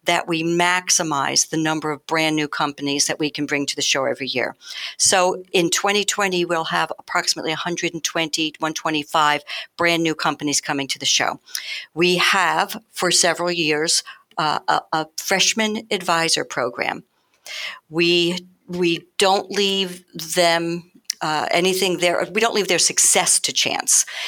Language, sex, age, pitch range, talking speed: English, female, 60-79, 160-205 Hz, 145 wpm